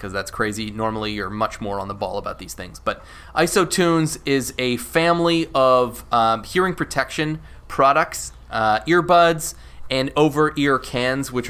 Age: 20-39